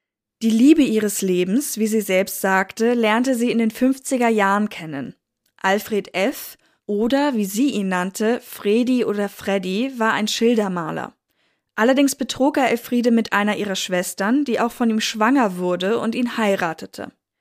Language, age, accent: German, 10-29, German